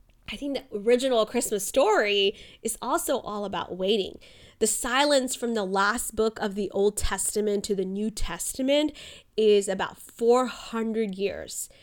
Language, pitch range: English, 210-270 Hz